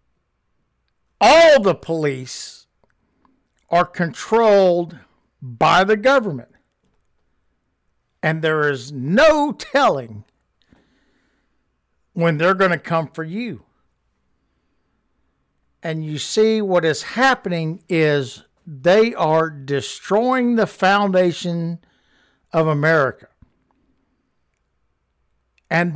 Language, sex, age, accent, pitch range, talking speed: English, male, 60-79, American, 130-205 Hz, 80 wpm